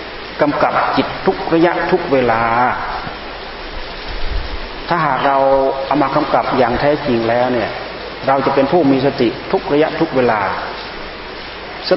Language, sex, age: Thai, male, 30-49